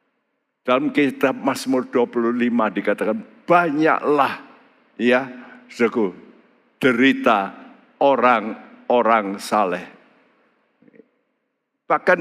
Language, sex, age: Indonesian, male, 60-79